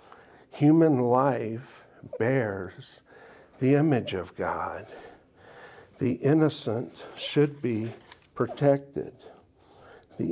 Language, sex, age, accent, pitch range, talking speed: English, male, 60-79, American, 110-135 Hz, 75 wpm